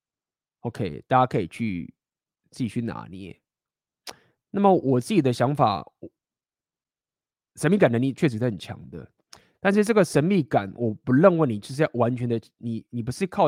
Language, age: Chinese, 20-39